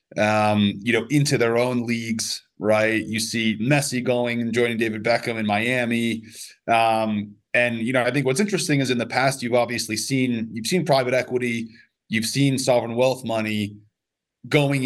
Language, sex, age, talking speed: English, male, 30-49, 175 wpm